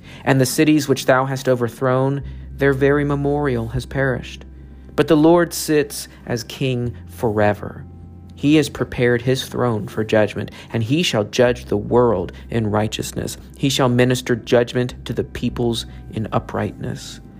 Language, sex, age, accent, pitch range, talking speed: English, male, 40-59, American, 110-140 Hz, 150 wpm